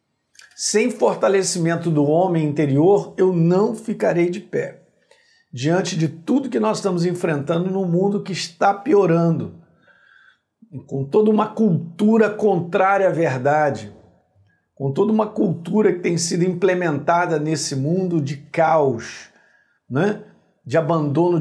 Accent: Brazilian